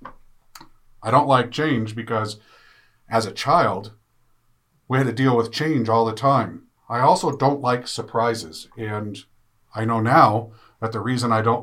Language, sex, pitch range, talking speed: English, male, 110-125 Hz, 160 wpm